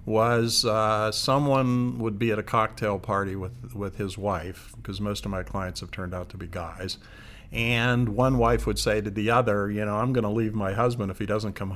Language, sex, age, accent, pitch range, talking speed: English, male, 50-69, American, 100-115 Hz, 225 wpm